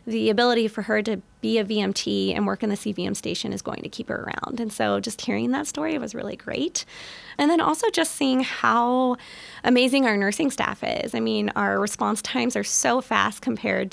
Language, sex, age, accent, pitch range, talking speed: English, female, 20-39, American, 185-235 Hz, 210 wpm